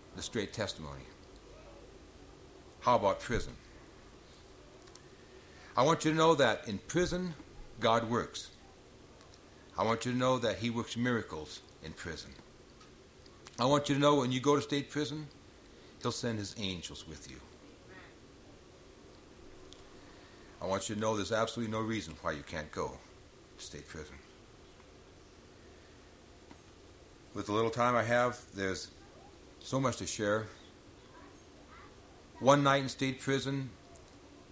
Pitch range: 95-130 Hz